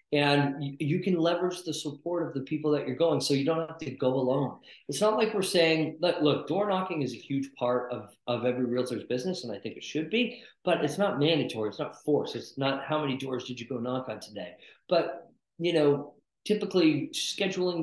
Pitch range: 135-180 Hz